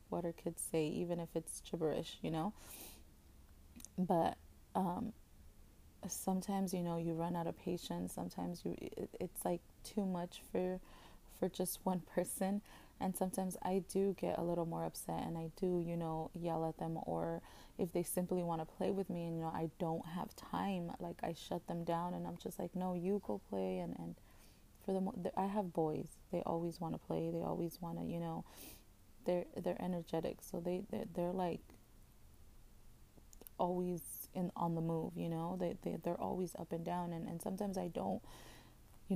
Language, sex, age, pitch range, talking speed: English, female, 20-39, 165-185 Hz, 190 wpm